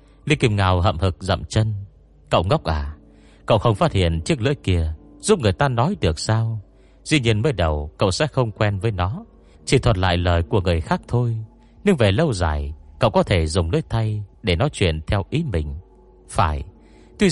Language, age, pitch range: Vietnamese, 30-49, 80-115 Hz